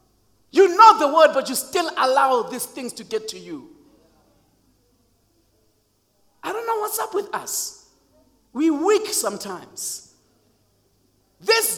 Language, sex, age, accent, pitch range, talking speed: English, male, 50-69, South African, 290-395 Hz, 125 wpm